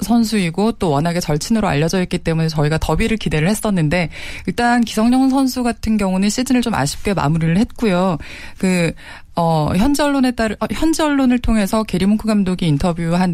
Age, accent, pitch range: 20-39, native, 175-235 Hz